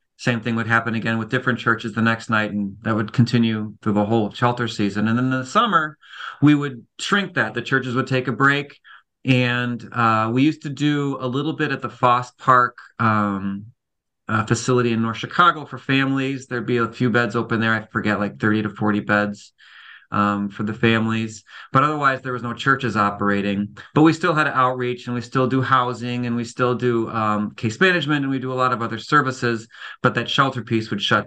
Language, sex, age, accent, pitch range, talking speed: English, male, 40-59, American, 110-130 Hz, 215 wpm